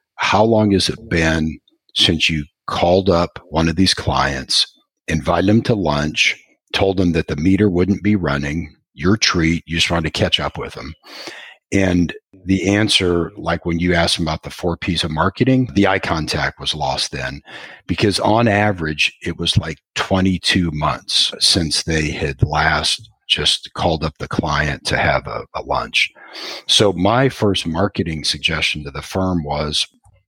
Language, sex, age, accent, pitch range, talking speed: English, male, 50-69, American, 80-100 Hz, 170 wpm